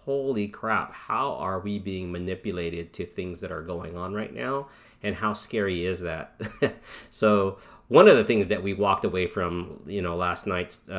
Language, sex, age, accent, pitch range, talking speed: English, male, 40-59, American, 85-100 Hz, 185 wpm